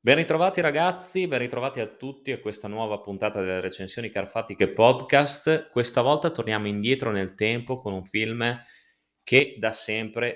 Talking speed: 155 wpm